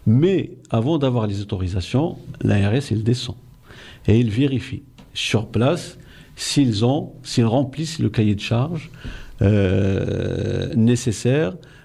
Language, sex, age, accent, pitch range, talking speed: French, male, 50-69, French, 110-130 Hz, 115 wpm